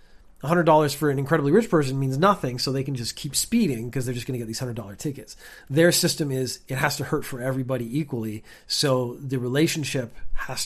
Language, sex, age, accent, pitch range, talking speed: English, male, 30-49, American, 125-160 Hz, 195 wpm